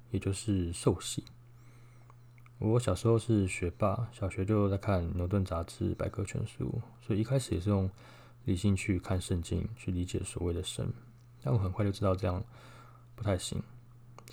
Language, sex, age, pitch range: Chinese, male, 20-39, 95-120 Hz